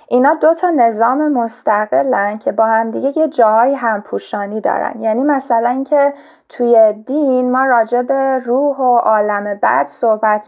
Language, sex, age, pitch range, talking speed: Persian, female, 10-29, 205-270 Hz, 155 wpm